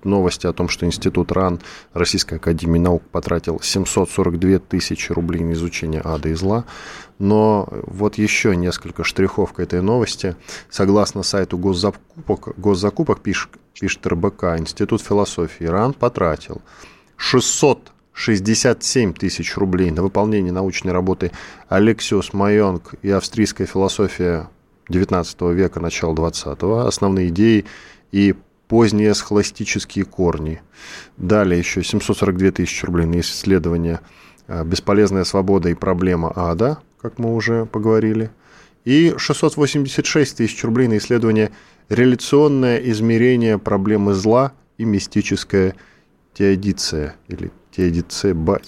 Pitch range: 90-105 Hz